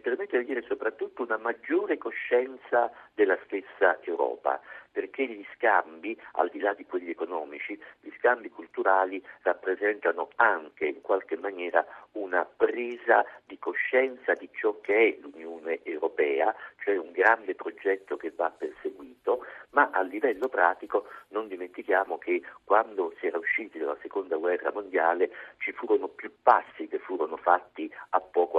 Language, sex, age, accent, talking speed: Italian, male, 50-69, native, 145 wpm